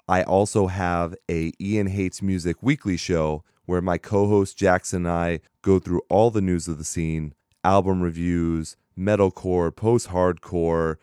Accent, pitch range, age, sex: American, 85-100 Hz, 30-49, male